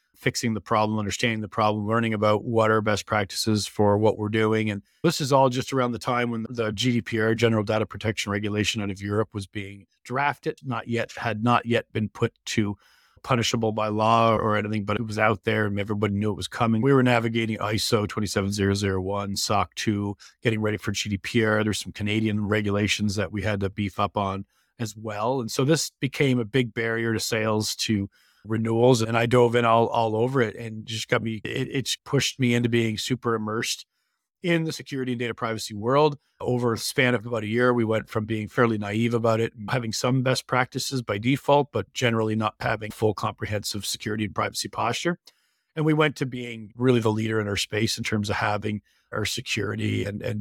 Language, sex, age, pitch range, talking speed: English, male, 40-59, 105-120 Hz, 205 wpm